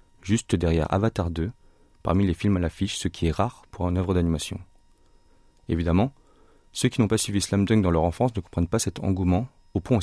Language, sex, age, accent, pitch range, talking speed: French, male, 30-49, French, 85-105 Hz, 215 wpm